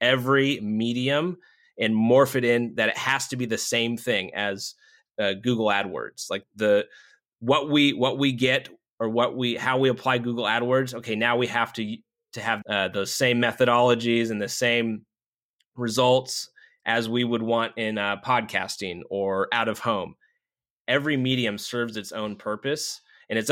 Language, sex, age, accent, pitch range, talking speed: English, male, 30-49, American, 110-130 Hz, 170 wpm